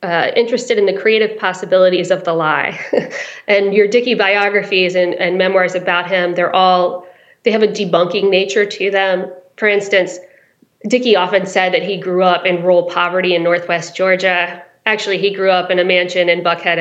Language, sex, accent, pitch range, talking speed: English, female, American, 180-215 Hz, 180 wpm